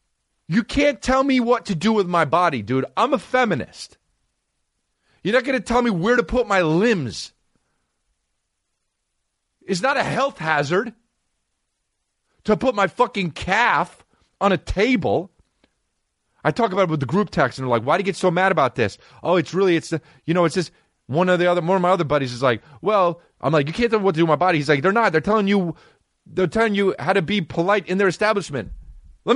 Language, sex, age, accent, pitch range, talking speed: English, male, 30-49, American, 165-225 Hz, 220 wpm